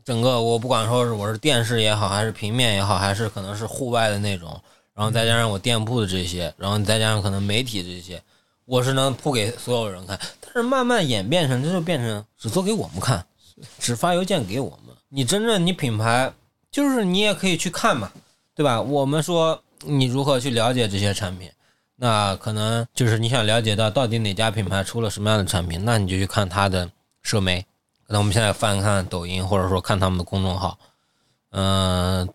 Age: 20-39